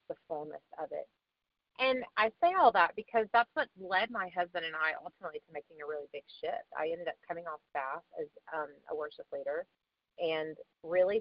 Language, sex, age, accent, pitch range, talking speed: English, female, 30-49, American, 155-205 Hz, 200 wpm